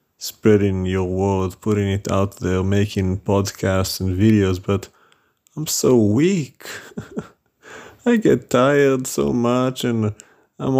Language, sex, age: English, male, 30-49